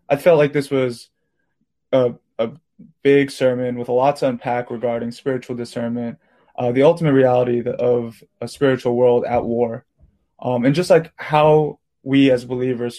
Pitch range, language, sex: 120-140 Hz, English, male